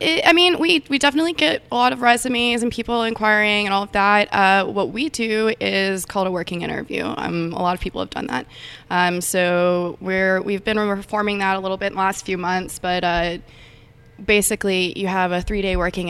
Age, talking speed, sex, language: 20-39, 220 wpm, female, English